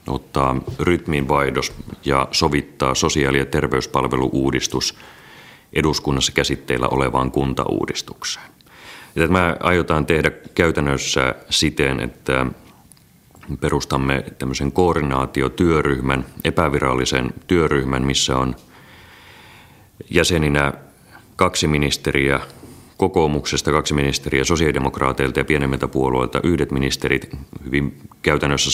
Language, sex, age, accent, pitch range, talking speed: Finnish, male, 30-49, native, 65-75 Hz, 80 wpm